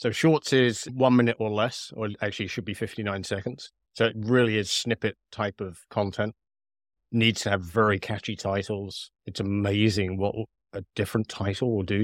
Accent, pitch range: British, 100-120 Hz